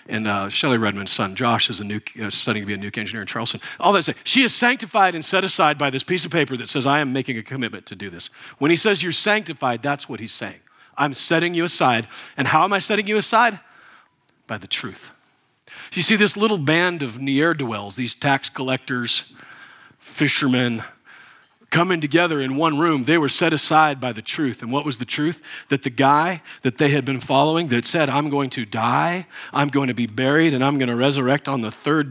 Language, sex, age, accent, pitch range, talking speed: English, male, 50-69, American, 120-165 Hz, 225 wpm